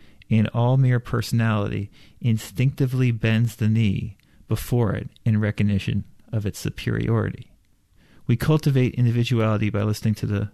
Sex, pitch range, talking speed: male, 105-120 Hz, 125 wpm